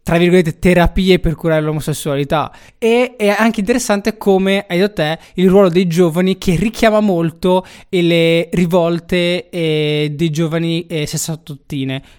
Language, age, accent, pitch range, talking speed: Italian, 20-39, native, 150-185 Hz, 130 wpm